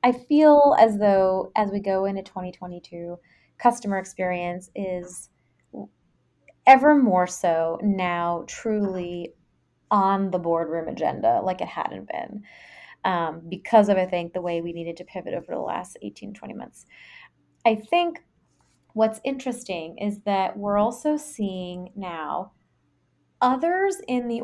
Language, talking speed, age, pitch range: English, 135 wpm, 20-39, 180-235 Hz